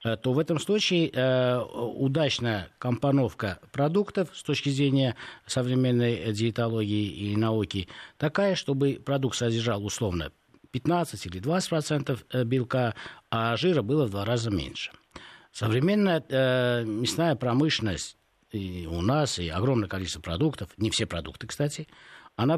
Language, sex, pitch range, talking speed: Russian, male, 110-145 Hz, 125 wpm